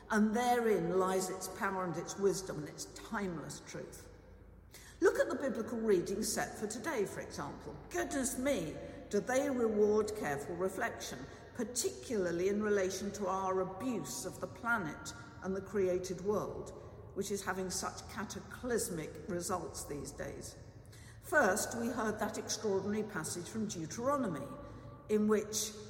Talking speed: 140 wpm